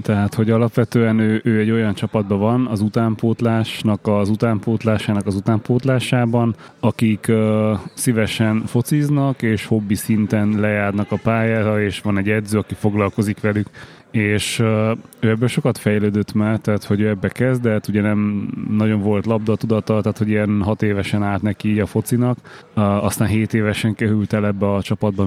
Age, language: 30-49, Hungarian